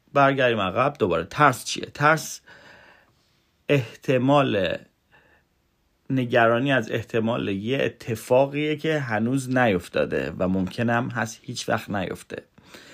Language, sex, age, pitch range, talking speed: Persian, male, 40-59, 110-130 Hz, 95 wpm